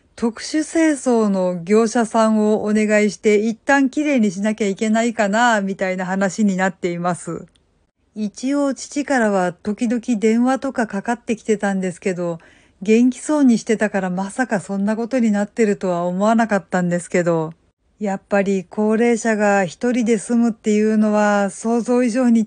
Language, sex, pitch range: Japanese, female, 195-235 Hz